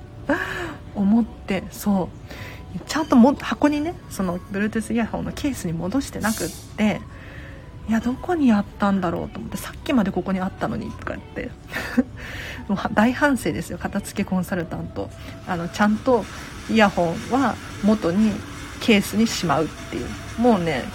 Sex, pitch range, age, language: female, 185-265 Hz, 40-59, Japanese